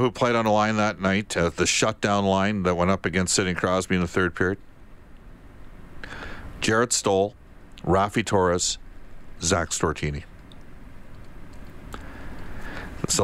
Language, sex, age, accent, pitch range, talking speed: English, male, 50-69, American, 85-105 Hz, 125 wpm